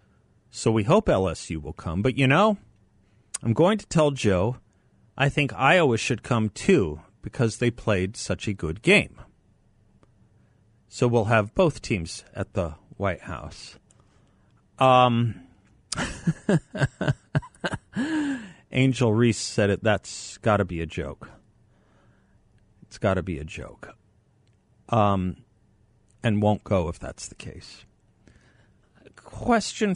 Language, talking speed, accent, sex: English, 125 wpm, American, male